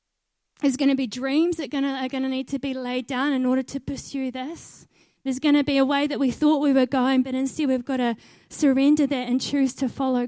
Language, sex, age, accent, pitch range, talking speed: English, female, 20-39, Australian, 235-270 Hz, 245 wpm